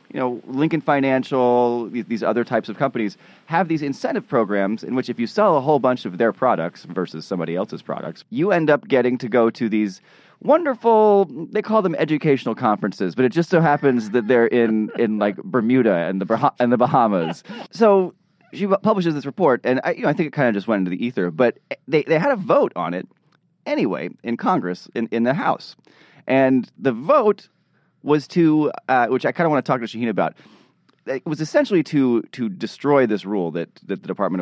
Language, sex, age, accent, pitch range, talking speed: English, male, 30-49, American, 110-155 Hz, 210 wpm